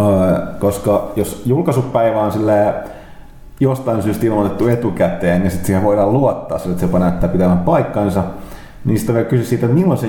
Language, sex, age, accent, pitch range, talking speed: Finnish, male, 30-49, native, 95-115 Hz, 165 wpm